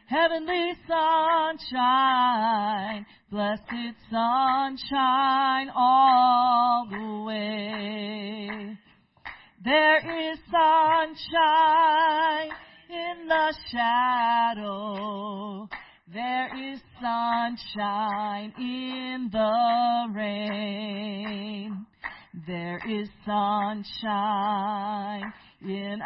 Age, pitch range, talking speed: 40-59, 210-265 Hz, 55 wpm